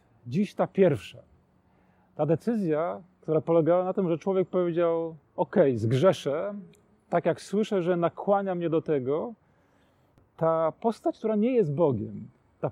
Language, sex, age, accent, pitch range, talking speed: Polish, male, 40-59, native, 140-195 Hz, 135 wpm